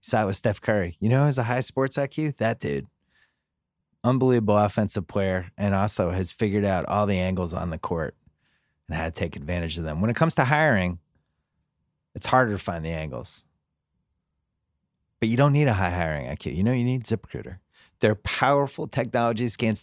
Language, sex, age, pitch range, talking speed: English, male, 30-49, 90-120 Hz, 195 wpm